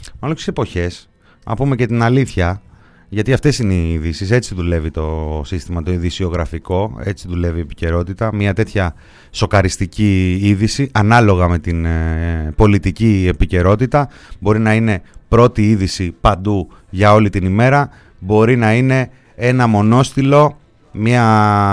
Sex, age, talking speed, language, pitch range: male, 30-49, 125 wpm, Greek, 90-120 Hz